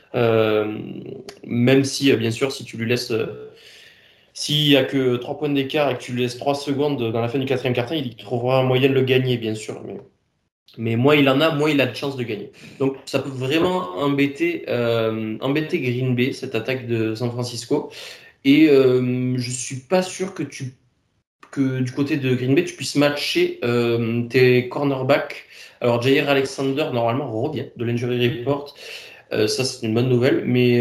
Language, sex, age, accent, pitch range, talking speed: French, male, 20-39, French, 120-140 Hz, 200 wpm